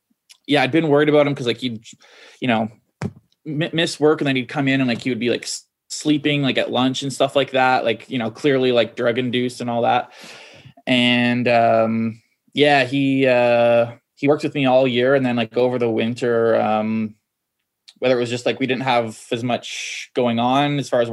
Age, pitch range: 20-39, 120-145 Hz